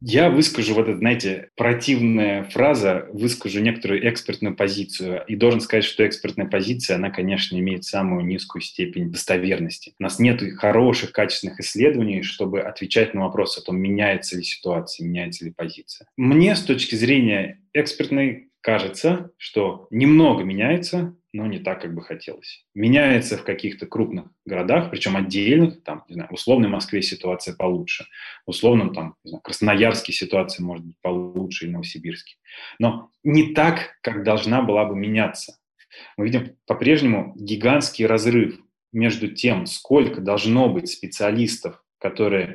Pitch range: 95-120 Hz